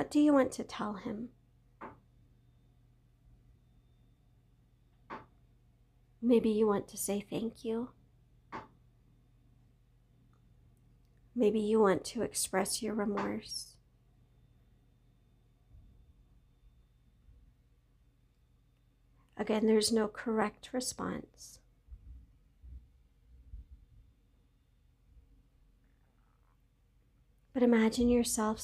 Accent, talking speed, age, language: American, 60 wpm, 50-69, English